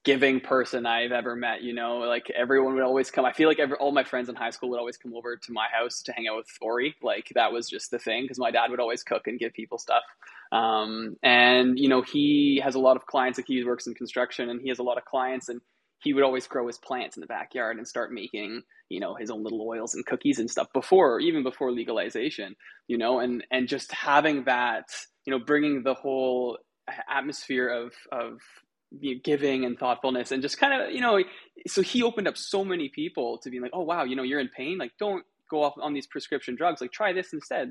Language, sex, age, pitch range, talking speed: English, male, 20-39, 125-150 Hz, 240 wpm